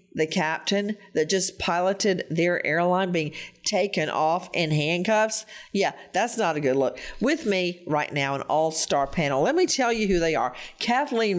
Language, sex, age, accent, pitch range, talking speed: English, female, 50-69, American, 165-215 Hz, 175 wpm